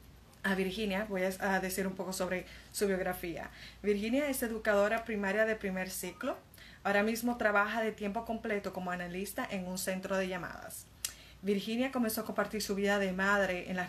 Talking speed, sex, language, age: 175 wpm, female, Spanish, 30-49